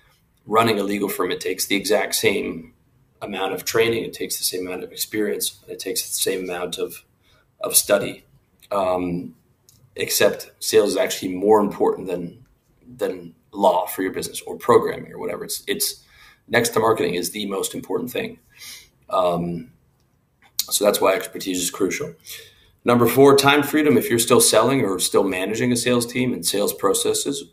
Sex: male